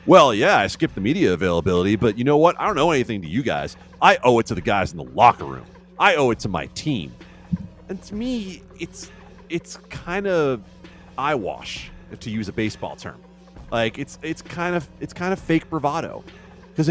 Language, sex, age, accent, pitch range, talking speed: English, male, 30-49, American, 120-185 Hz, 205 wpm